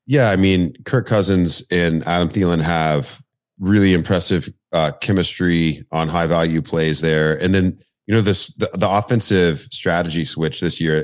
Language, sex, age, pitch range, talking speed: English, male, 30-49, 80-95 Hz, 160 wpm